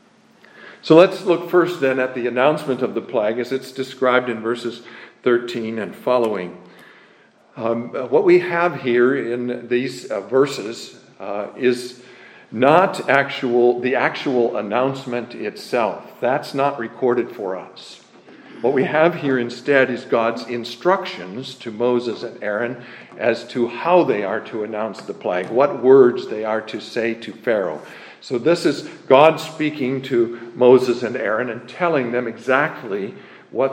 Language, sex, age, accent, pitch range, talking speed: English, male, 50-69, American, 120-140 Hz, 150 wpm